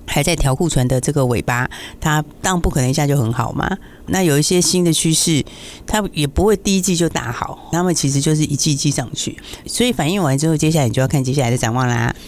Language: Chinese